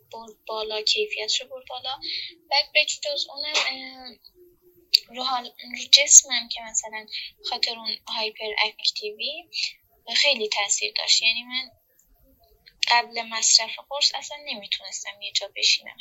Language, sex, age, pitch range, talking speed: Persian, female, 10-29, 220-295 Hz, 110 wpm